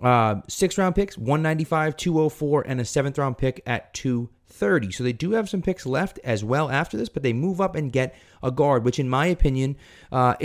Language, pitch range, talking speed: English, 105-135 Hz, 200 wpm